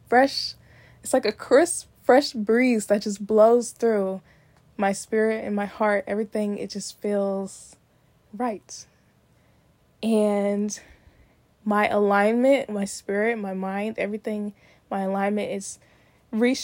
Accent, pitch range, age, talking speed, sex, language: American, 200-230 Hz, 10-29, 120 wpm, female, English